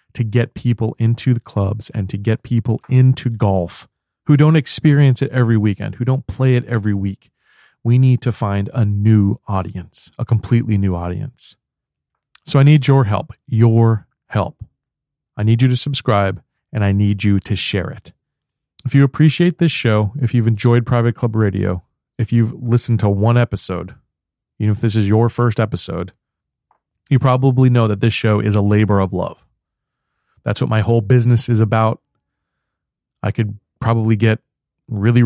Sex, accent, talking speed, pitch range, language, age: male, American, 175 wpm, 100-125 Hz, English, 40-59